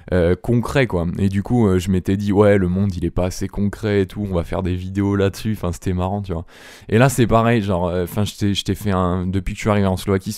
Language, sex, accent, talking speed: French, male, French, 290 wpm